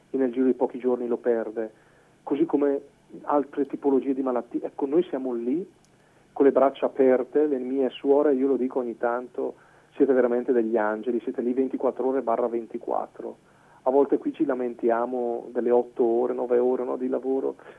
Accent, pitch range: native, 115-140 Hz